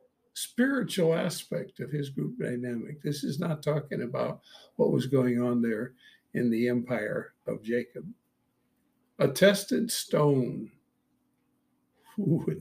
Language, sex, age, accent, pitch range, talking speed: English, male, 60-79, American, 130-175 Hz, 125 wpm